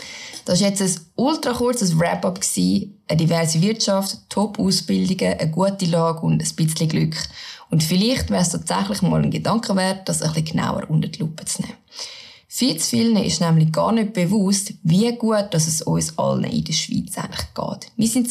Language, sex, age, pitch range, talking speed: German, female, 20-39, 160-205 Hz, 190 wpm